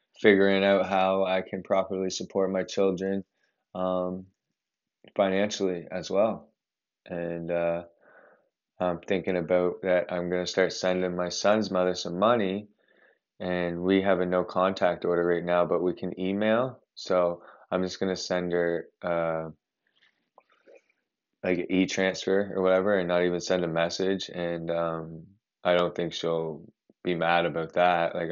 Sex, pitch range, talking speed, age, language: male, 85-95 Hz, 150 wpm, 20-39, English